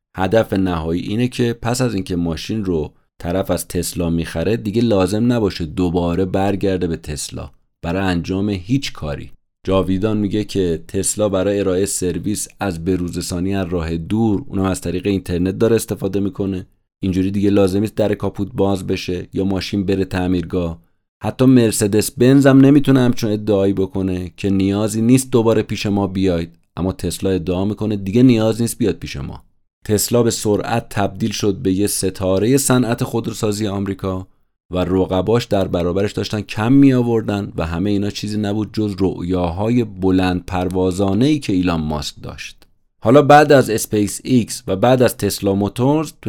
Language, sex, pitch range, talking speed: Persian, male, 95-110 Hz, 160 wpm